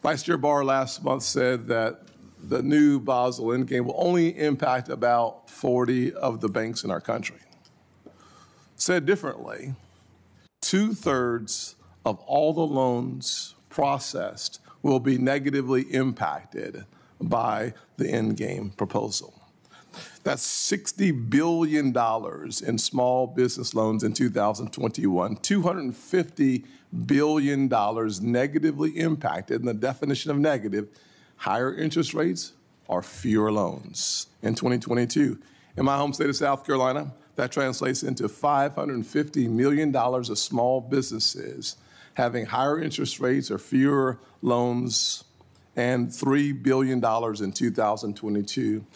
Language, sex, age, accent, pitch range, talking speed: English, male, 50-69, American, 115-145 Hz, 110 wpm